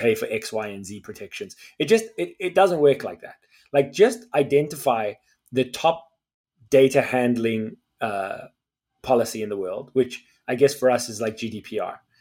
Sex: male